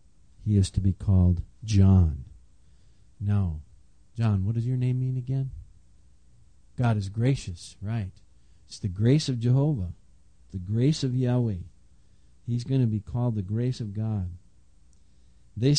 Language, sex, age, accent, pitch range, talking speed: English, male, 50-69, American, 95-130 Hz, 140 wpm